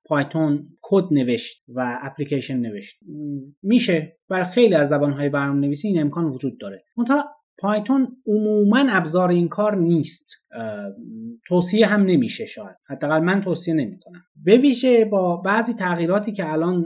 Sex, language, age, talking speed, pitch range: male, Persian, 30-49, 140 wpm, 140-205 Hz